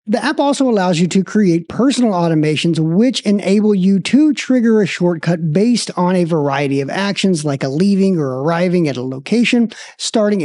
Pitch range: 180-250 Hz